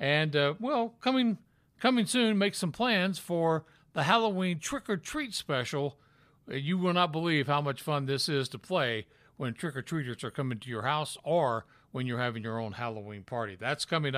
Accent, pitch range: American, 140-195 Hz